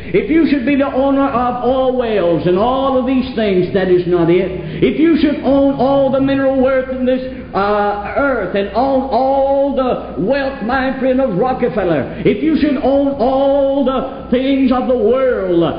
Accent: American